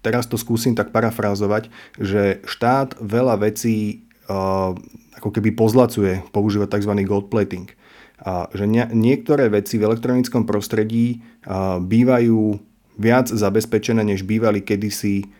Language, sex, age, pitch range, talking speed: Slovak, male, 30-49, 95-110 Hz, 100 wpm